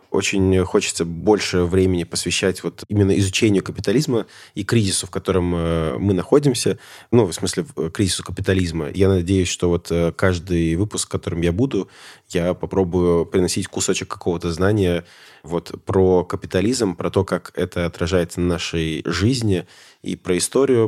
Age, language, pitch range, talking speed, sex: 20-39, Russian, 85-100 Hz, 145 wpm, male